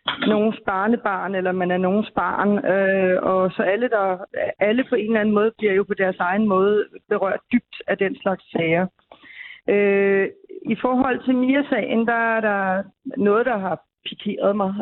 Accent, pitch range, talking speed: native, 190-230 Hz, 175 wpm